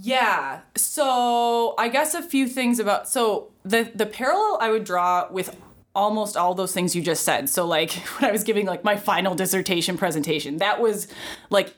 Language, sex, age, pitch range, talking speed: English, female, 20-39, 165-215 Hz, 190 wpm